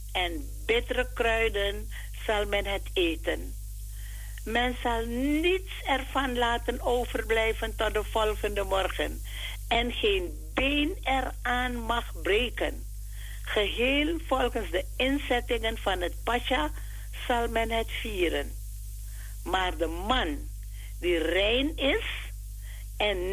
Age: 60-79